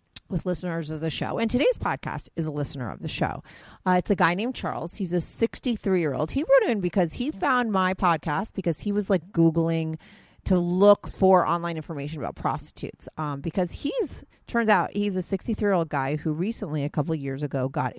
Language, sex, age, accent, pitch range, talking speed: English, female, 30-49, American, 155-205 Hz, 210 wpm